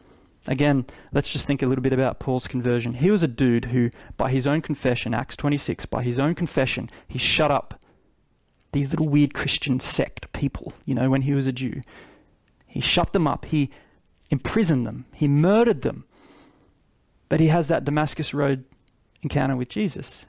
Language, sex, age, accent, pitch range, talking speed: English, male, 20-39, Australian, 130-180 Hz, 175 wpm